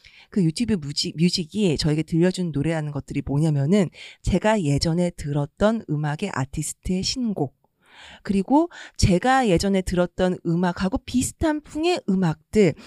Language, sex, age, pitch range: Korean, female, 40-59, 160-250 Hz